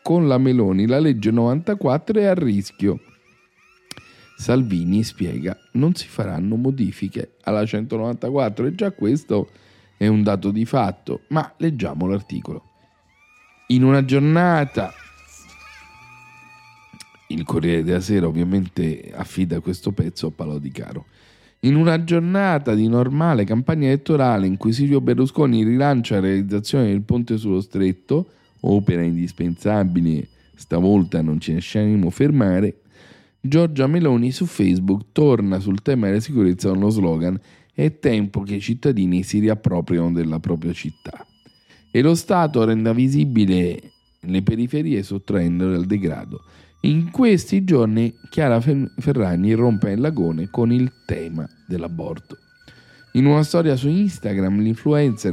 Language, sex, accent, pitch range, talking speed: Italian, male, native, 95-135 Hz, 130 wpm